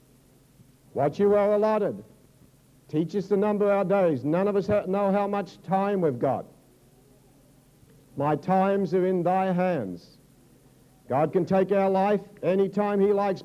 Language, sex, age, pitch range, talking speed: English, male, 60-79, 150-195 Hz, 150 wpm